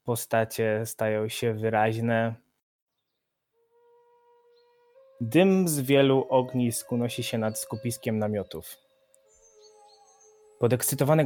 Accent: native